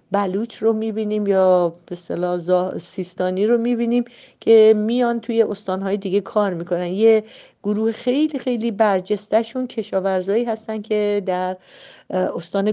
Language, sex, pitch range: Persian, female, 190-245 Hz